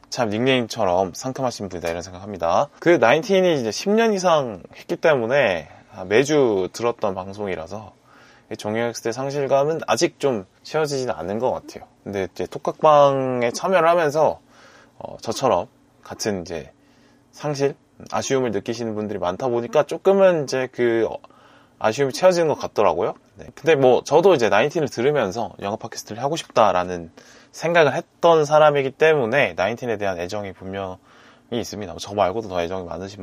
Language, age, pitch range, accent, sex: Korean, 20-39, 105-145 Hz, native, male